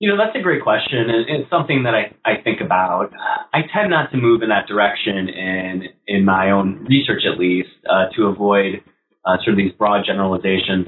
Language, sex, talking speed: English, male, 210 wpm